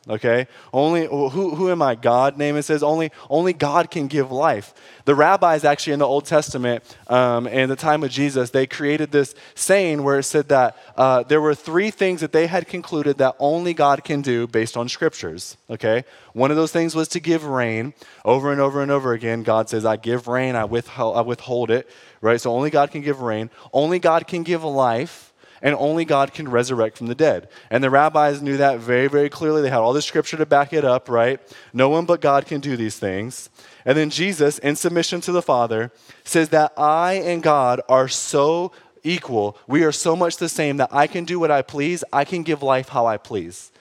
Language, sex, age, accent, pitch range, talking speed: English, male, 20-39, American, 130-165 Hz, 220 wpm